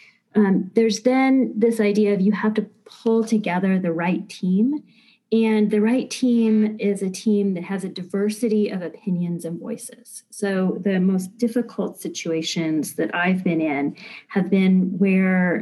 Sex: female